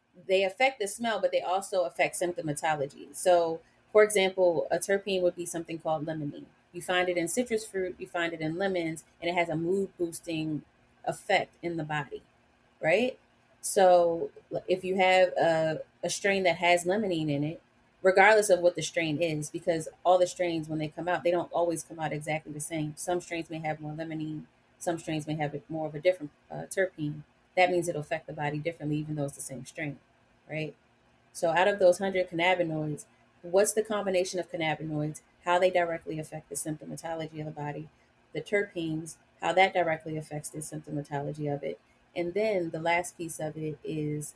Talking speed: 190 wpm